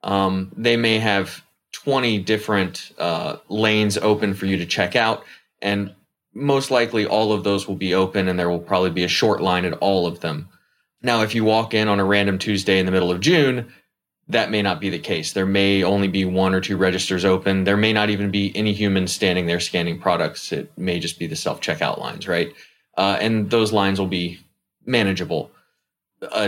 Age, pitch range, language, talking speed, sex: 20-39, 95-110 Hz, English, 210 wpm, male